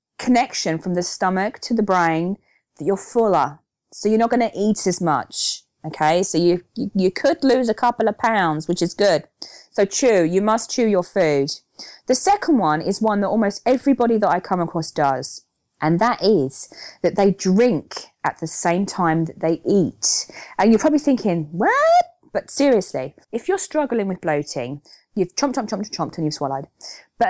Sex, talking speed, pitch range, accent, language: female, 185 wpm, 165-240 Hz, British, English